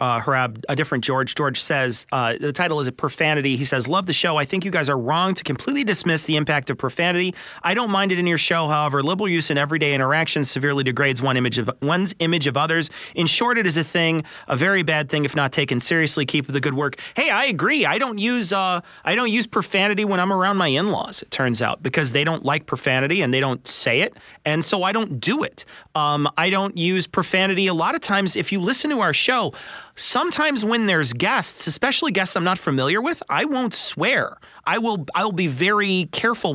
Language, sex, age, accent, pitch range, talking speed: English, male, 30-49, American, 145-195 Hz, 235 wpm